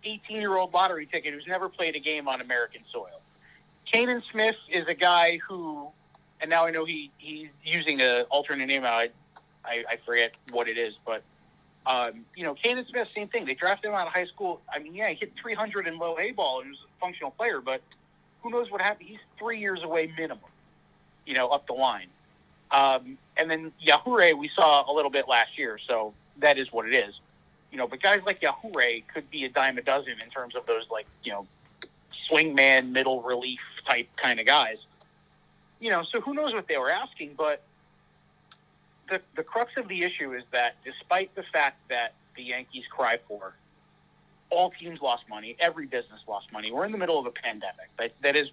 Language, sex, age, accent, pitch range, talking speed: English, male, 30-49, American, 135-200 Hz, 205 wpm